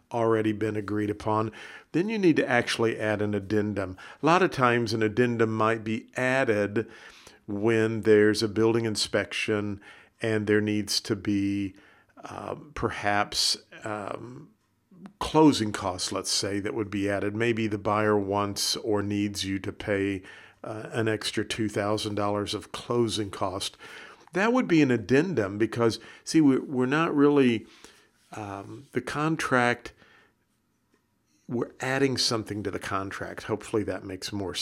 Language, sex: English, male